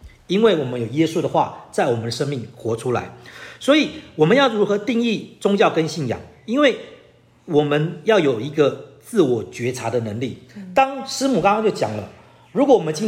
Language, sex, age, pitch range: Chinese, male, 40-59, 135-205 Hz